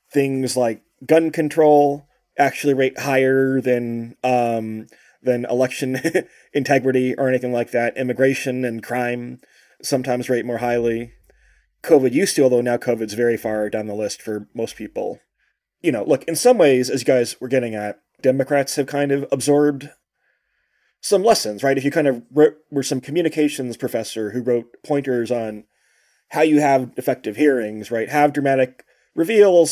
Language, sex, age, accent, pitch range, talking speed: English, male, 20-39, American, 120-145 Hz, 160 wpm